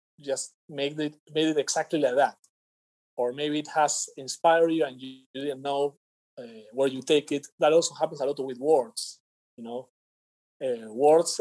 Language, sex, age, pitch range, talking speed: English, male, 30-49, 130-165 Hz, 185 wpm